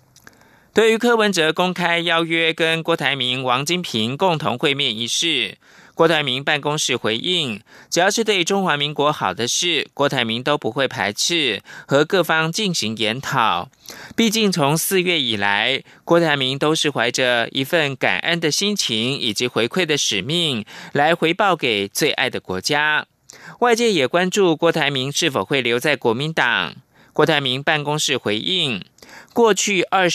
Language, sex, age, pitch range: German, male, 20-39, 125-175 Hz